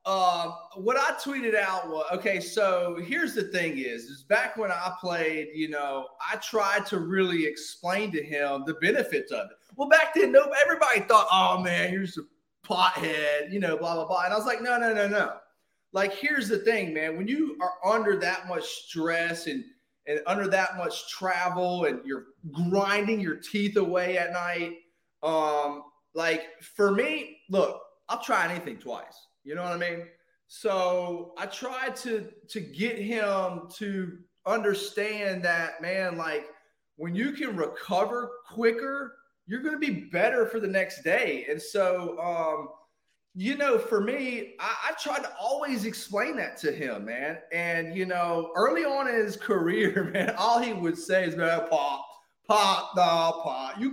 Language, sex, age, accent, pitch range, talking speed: English, male, 30-49, American, 170-230 Hz, 175 wpm